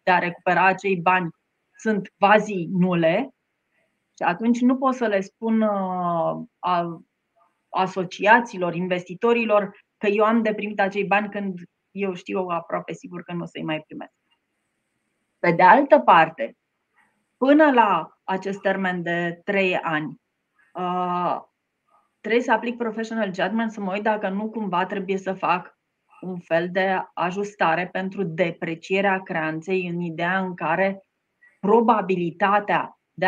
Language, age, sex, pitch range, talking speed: Romanian, 30-49, female, 170-205 Hz, 130 wpm